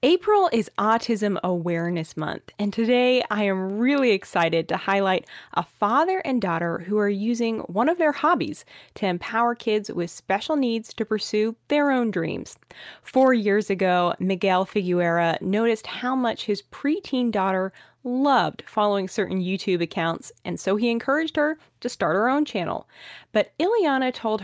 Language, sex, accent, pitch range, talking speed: English, female, American, 180-235 Hz, 155 wpm